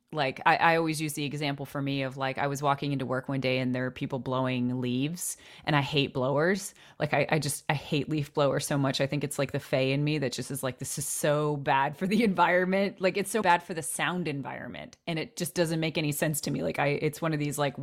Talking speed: 275 wpm